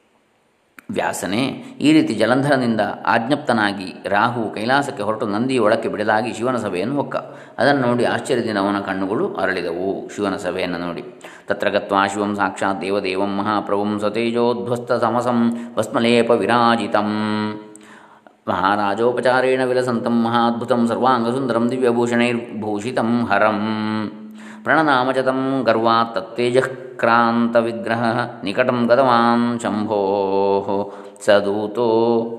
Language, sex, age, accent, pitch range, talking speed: Kannada, male, 20-39, native, 105-120 Hz, 75 wpm